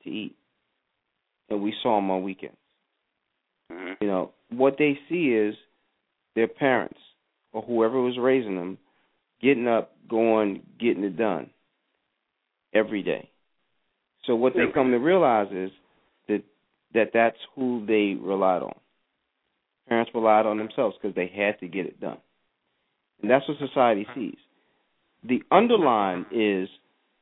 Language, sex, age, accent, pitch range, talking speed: English, male, 40-59, American, 95-140 Hz, 130 wpm